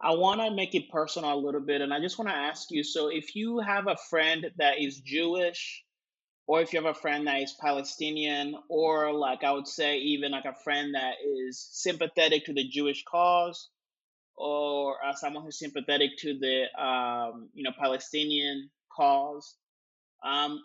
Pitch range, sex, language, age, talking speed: 140-170 Hz, male, English, 30-49, 185 wpm